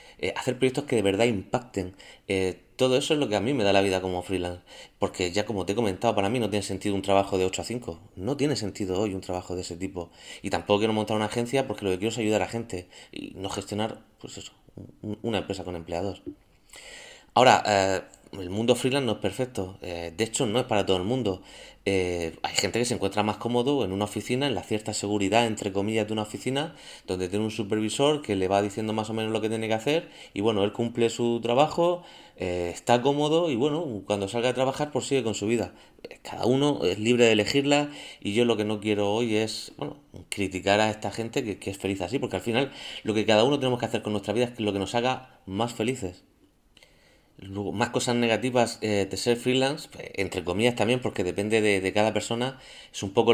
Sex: male